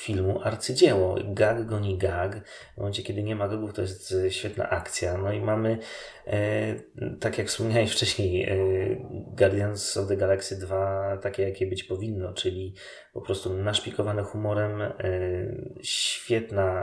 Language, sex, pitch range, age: Polish, male, 90-100 Hz, 20-39